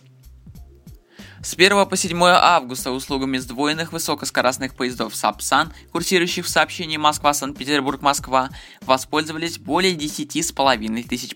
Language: Russian